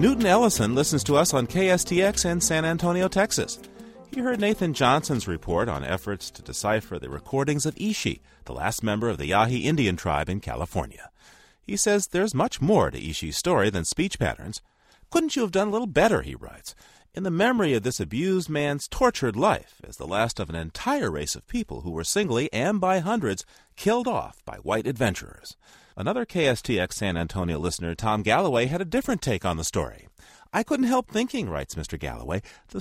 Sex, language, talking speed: male, English, 190 wpm